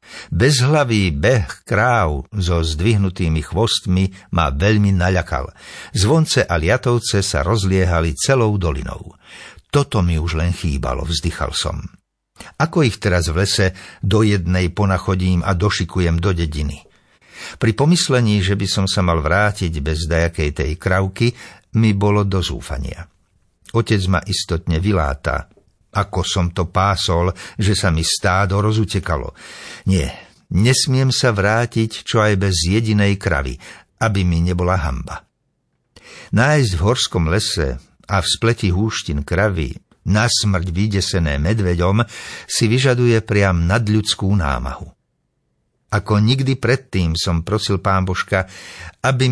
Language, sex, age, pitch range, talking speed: Slovak, male, 60-79, 85-110 Hz, 125 wpm